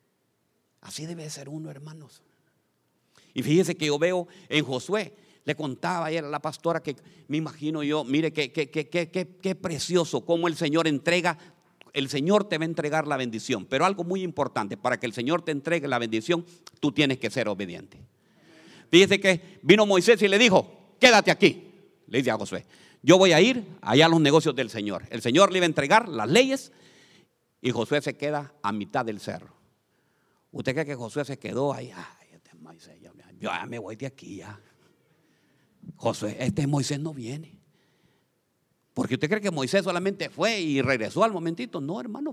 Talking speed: 185 wpm